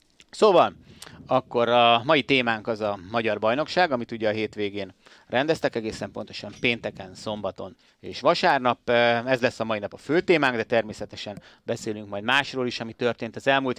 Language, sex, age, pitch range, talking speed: Hungarian, male, 30-49, 105-130 Hz, 165 wpm